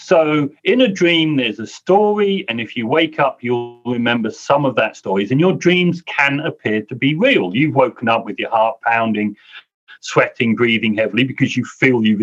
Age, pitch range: 40-59, 120-175 Hz